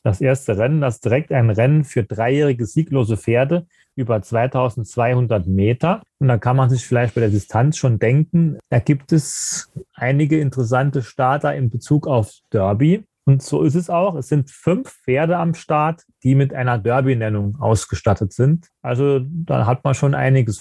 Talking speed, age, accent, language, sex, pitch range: 170 wpm, 30-49, German, German, male, 120-150 Hz